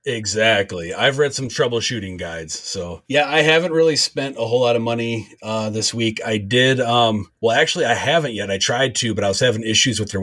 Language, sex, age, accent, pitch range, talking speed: English, male, 30-49, American, 100-115 Hz, 225 wpm